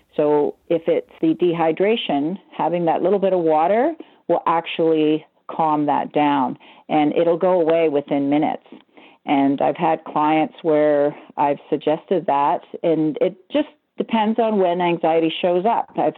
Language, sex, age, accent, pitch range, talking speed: English, female, 40-59, American, 150-180 Hz, 150 wpm